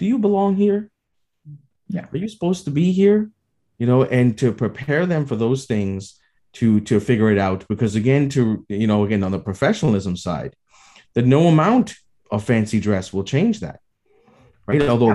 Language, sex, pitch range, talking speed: English, male, 105-145 Hz, 180 wpm